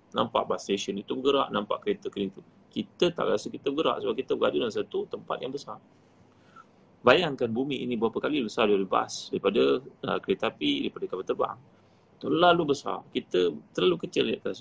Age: 30-49